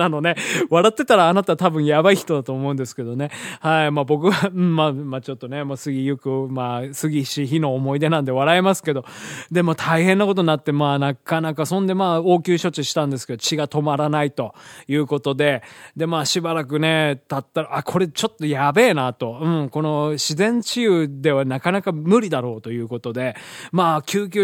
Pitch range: 135-175 Hz